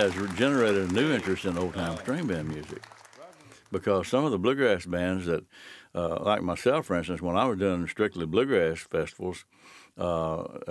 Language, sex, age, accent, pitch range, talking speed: English, male, 60-79, American, 80-95 Hz, 170 wpm